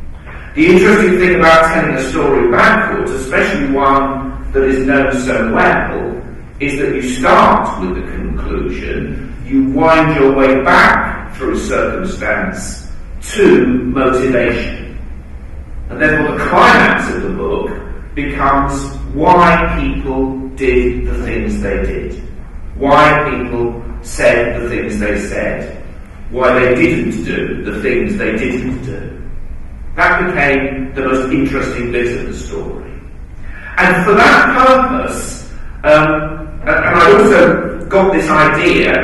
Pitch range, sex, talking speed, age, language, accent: 105-155 Hz, male, 130 wpm, 40-59, English, British